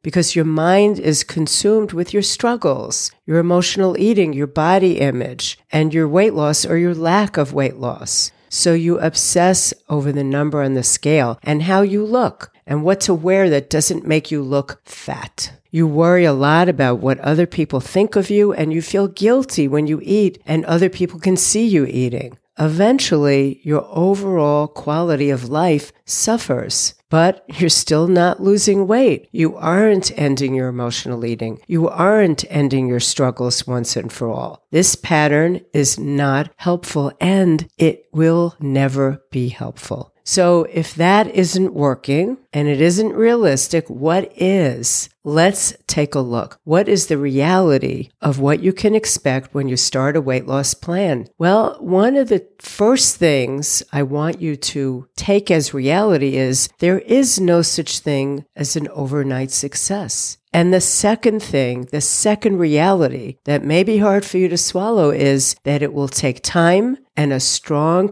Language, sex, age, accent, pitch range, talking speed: English, female, 50-69, American, 140-185 Hz, 165 wpm